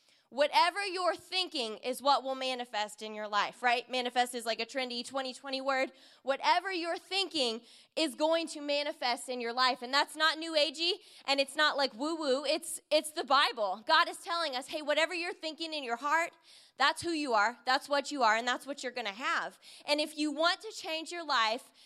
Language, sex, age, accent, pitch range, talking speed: English, female, 20-39, American, 255-330 Hz, 210 wpm